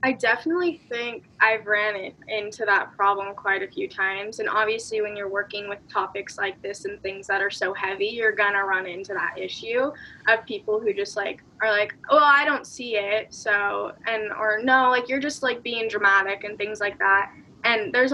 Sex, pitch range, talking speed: female, 205-255 Hz, 205 wpm